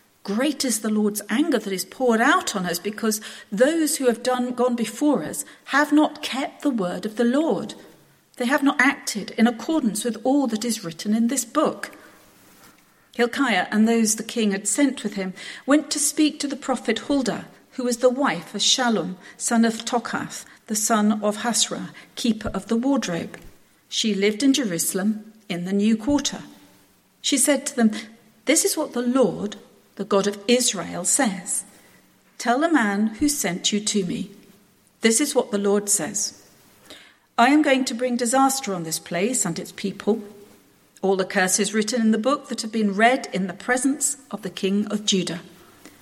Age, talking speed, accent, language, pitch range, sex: 40-59, 185 wpm, British, English, 205-270 Hz, female